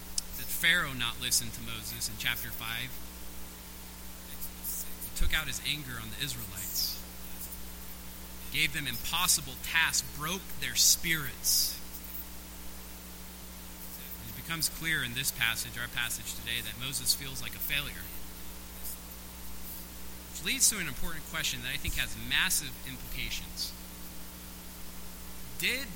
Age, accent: 30-49, American